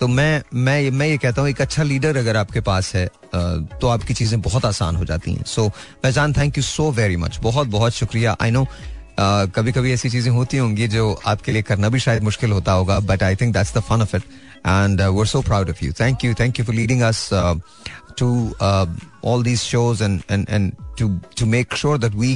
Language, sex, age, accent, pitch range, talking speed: Hindi, male, 30-49, native, 100-130 Hz, 230 wpm